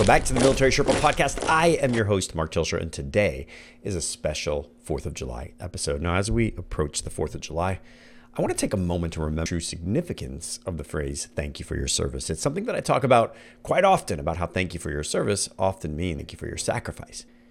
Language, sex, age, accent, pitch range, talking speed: English, male, 40-59, American, 80-115 Hz, 245 wpm